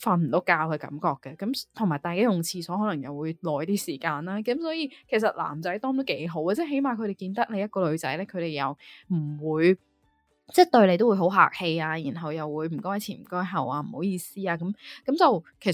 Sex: female